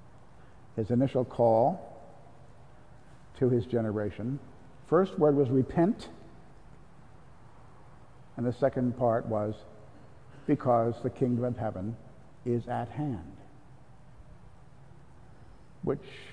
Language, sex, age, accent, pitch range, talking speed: English, male, 50-69, American, 120-140 Hz, 90 wpm